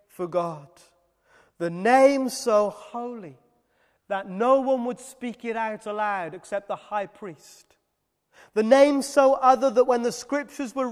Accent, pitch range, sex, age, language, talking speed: British, 225-265 Hz, male, 30-49, English, 150 wpm